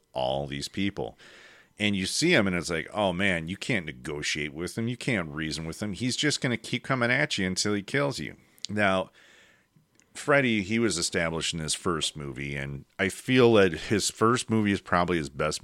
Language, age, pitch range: English, 40-59, 80-110 Hz